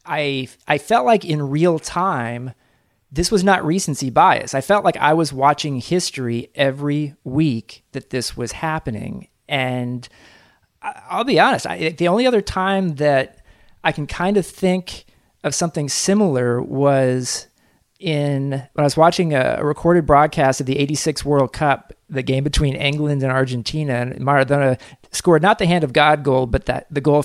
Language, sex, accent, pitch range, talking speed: English, male, American, 130-160 Hz, 165 wpm